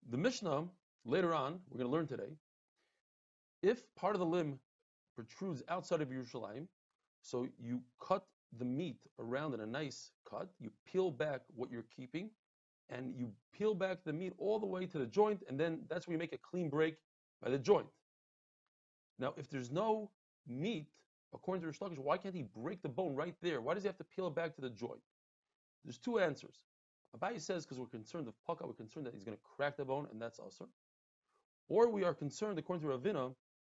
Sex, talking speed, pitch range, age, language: male, 205 wpm, 125-180 Hz, 40-59, English